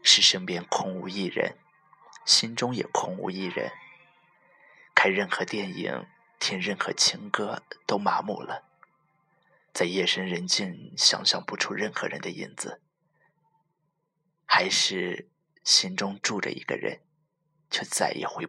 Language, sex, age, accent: Chinese, male, 20-39, native